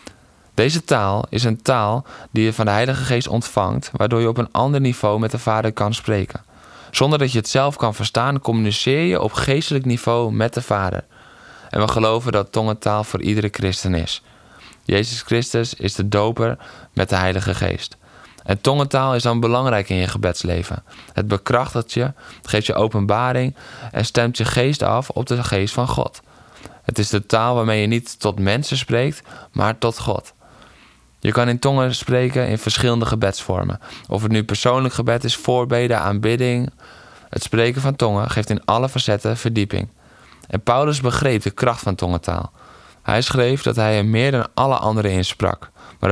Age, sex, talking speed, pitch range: 20-39, male, 180 wpm, 100-120 Hz